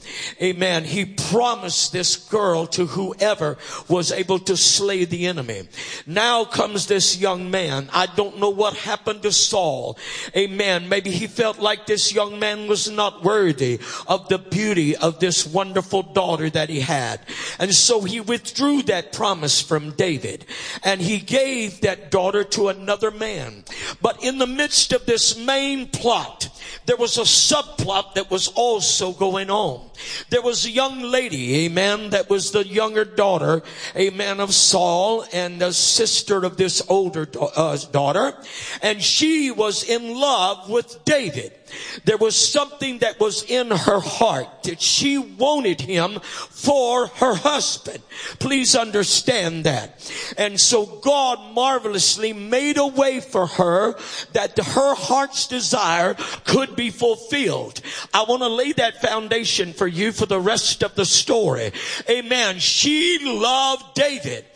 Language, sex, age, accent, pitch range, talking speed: English, male, 50-69, American, 185-240 Hz, 150 wpm